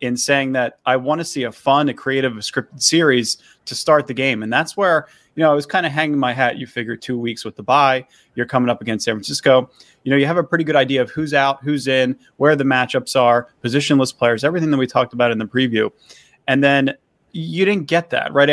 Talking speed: 250 wpm